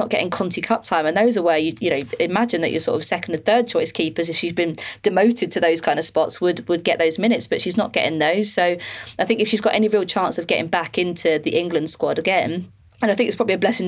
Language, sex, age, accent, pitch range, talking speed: English, female, 20-39, British, 170-220 Hz, 280 wpm